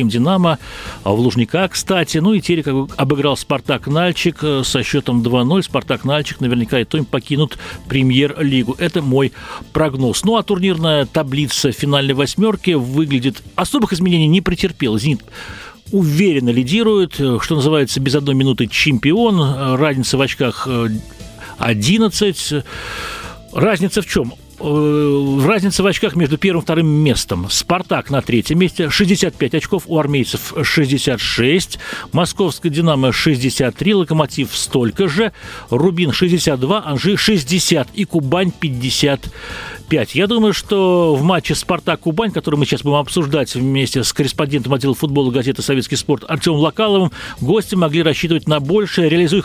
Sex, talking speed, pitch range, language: male, 130 wpm, 135-180 Hz, Russian